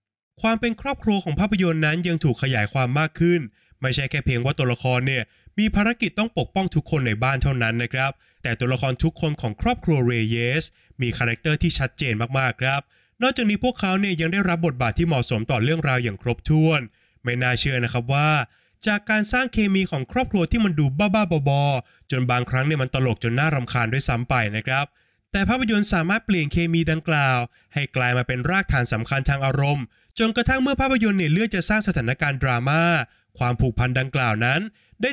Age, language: 20-39, Thai